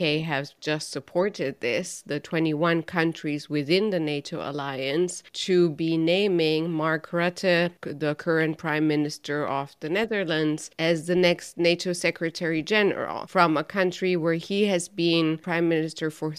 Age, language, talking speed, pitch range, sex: 30-49, English, 145 wpm, 155-180 Hz, female